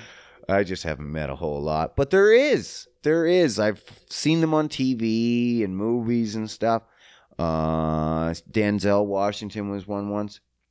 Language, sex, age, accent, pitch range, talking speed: English, male, 30-49, American, 80-115 Hz, 150 wpm